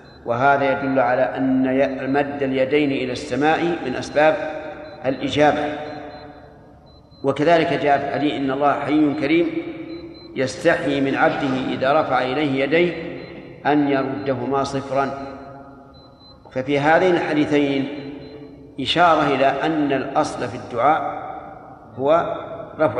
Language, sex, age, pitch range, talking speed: Arabic, male, 50-69, 135-155 Hz, 105 wpm